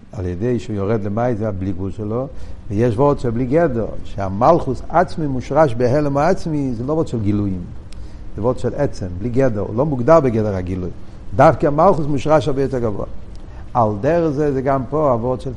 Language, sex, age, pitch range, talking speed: Hebrew, male, 60-79, 100-135 Hz, 190 wpm